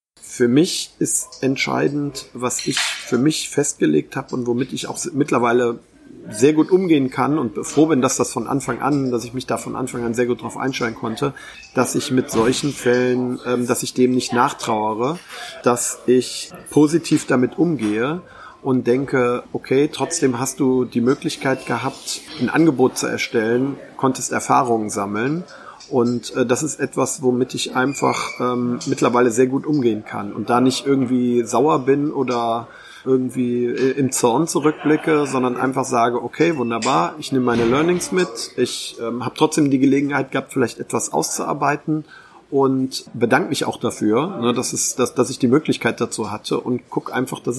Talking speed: 165 wpm